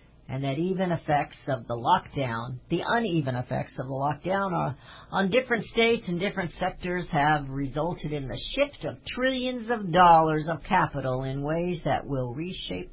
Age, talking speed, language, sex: 60-79, 160 wpm, English, female